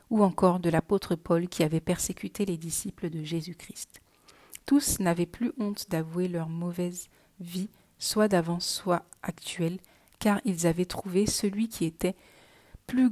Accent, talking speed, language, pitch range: French, 145 wpm, French, 170-205 Hz